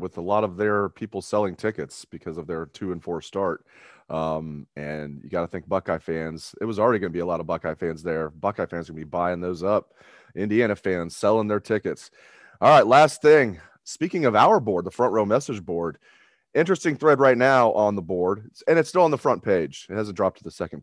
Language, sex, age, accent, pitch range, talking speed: English, male, 30-49, American, 95-125 Hz, 235 wpm